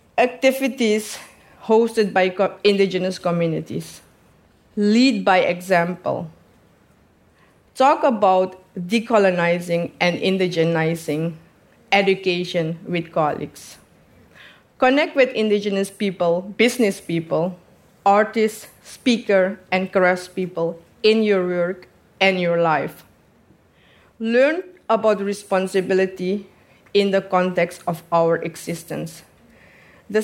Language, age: English, 40-59